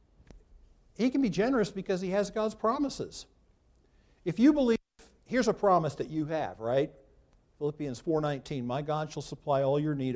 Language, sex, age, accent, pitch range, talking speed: English, male, 60-79, American, 115-170 Hz, 165 wpm